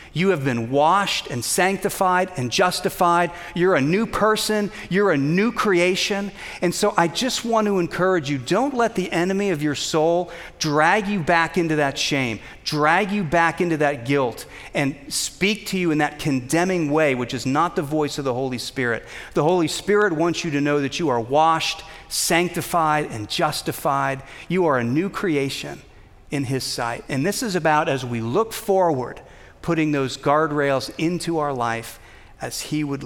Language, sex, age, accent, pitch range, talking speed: English, male, 40-59, American, 130-175 Hz, 180 wpm